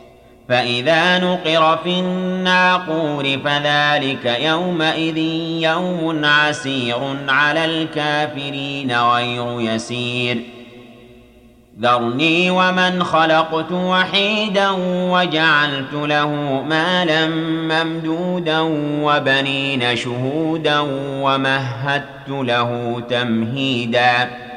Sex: male